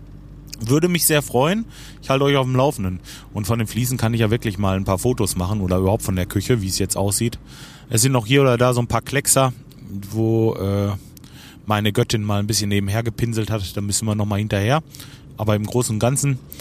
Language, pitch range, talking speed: German, 105-140 Hz, 225 wpm